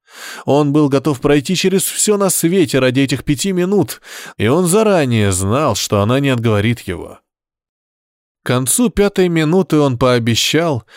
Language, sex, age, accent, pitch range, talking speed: Russian, male, 20-39, native, 105-175 Hz, 150 wpm